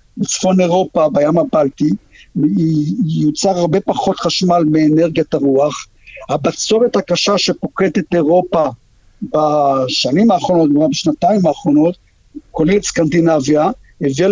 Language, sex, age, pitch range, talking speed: Hebrew, male, 50-69, 150-190 Hz, 90 wpm